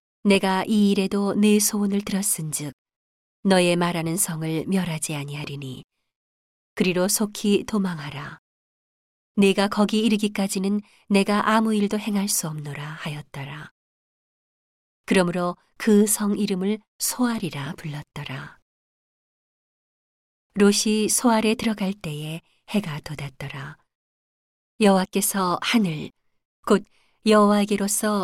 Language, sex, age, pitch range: Korean, female, 40-59, 160-210 Hz